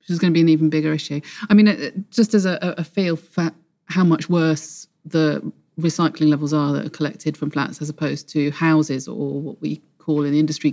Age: 40-59